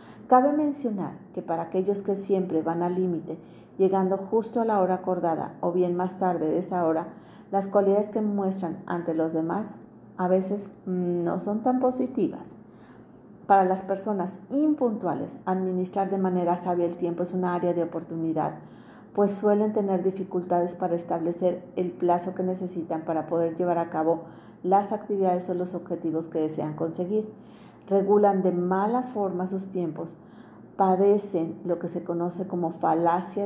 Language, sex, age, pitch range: Spanish, female, 40-59, 175-200 Hz